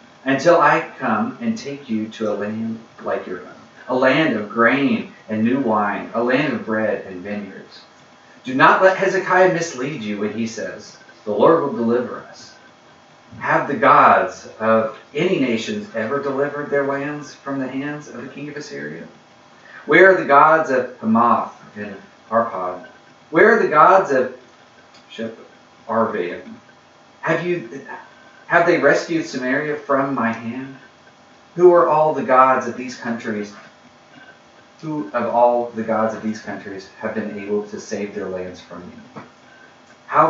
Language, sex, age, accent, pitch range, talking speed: English, male, 40-59, American, 110-150 Hz, 160 wpm